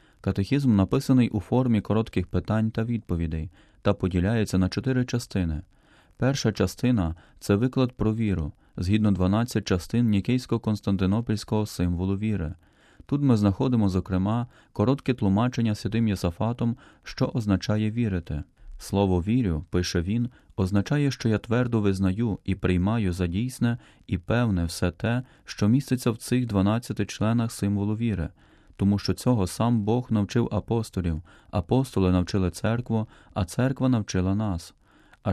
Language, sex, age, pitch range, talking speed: Ukrainian, male, 30-49, 95-115 Hz, 130 wpm